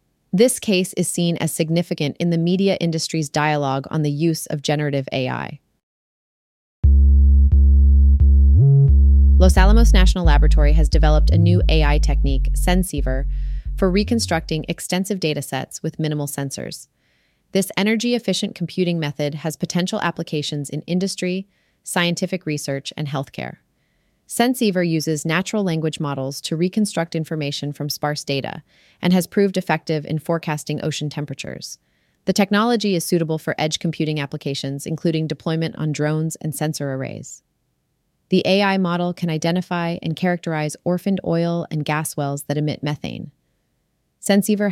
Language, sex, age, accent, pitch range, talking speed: English, female, 30-49, American, 145-175 Hz, 135 wpm